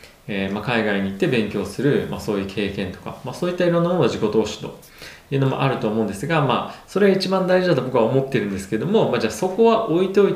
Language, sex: Japanese, male